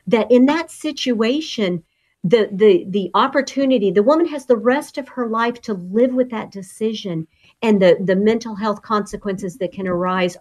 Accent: American